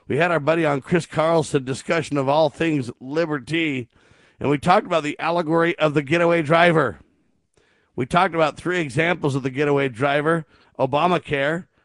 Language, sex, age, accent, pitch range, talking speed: English, male, 50-69, American, 130-160 Hz, 160 wpm